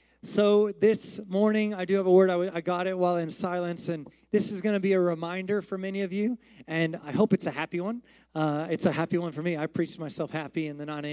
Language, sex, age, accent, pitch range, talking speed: English, male, 30-49, American, 170-205 Hz, 260 wpm